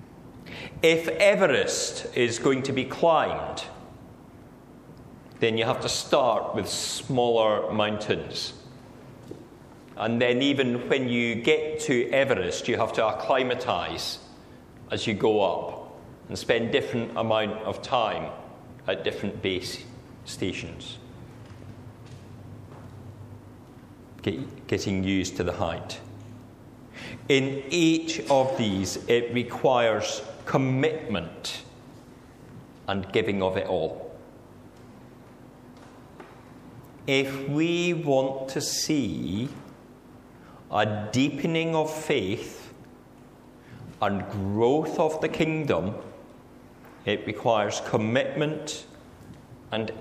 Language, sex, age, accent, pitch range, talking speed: English, male, 40-59, British, 110-135 Hz, 90 wpm